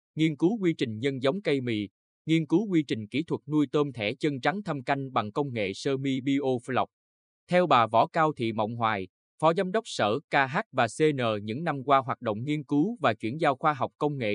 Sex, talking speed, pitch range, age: male, 230 wpm, 115-155 Hz, 20-39